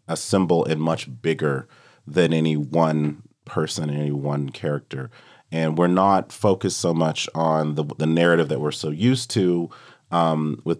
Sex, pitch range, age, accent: male, 70-85 Hz, 30-49, American